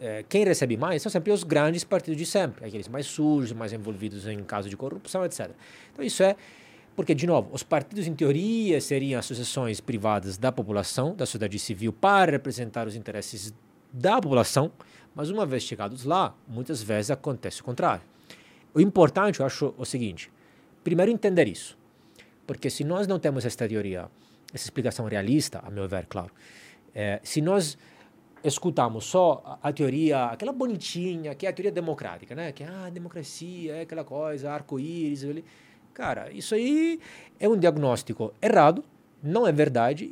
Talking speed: 170 wpm